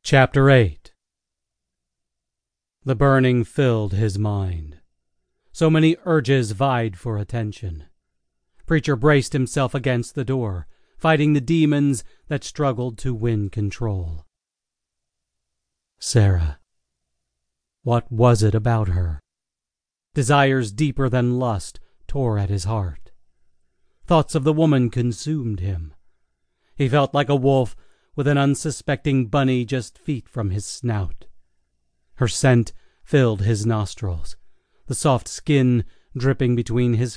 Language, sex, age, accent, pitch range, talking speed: English, male, 40-59, American, 90-140 Hz, 115 wpm